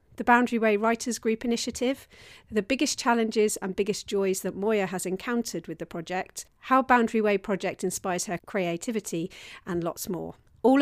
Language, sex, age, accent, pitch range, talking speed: English, female, 40-59, British, 185-240 Hz, 165 wpm